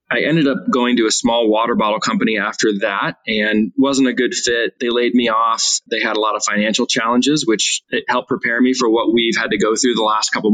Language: English